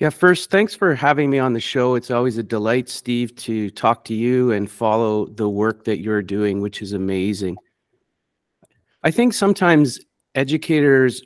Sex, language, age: male, English, 40-59